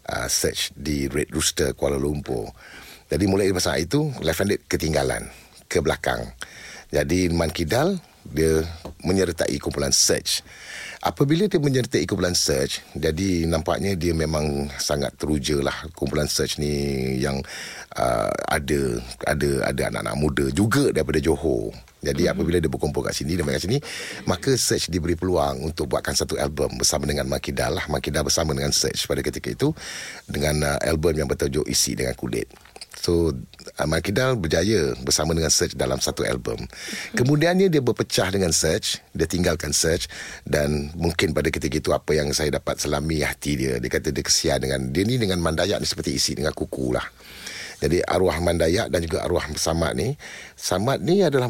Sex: male